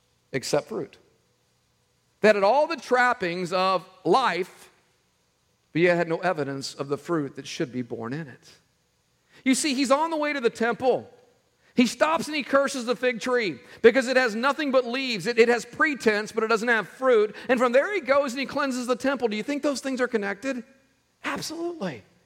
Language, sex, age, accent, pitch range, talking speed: English, male, 50-69, American, 190-255 Hz, 195 wpm